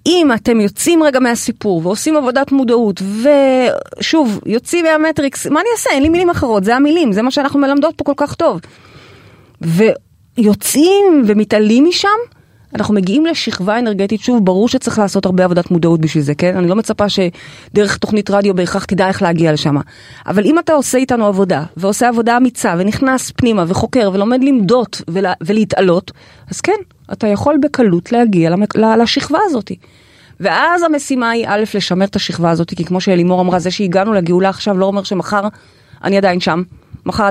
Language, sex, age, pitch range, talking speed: Hebrew, female, 30-49, 180-245 Hz, 160 wpm